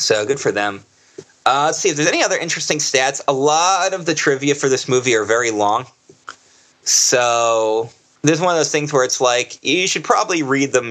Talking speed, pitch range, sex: 215 wpm, 125-180 Hz, male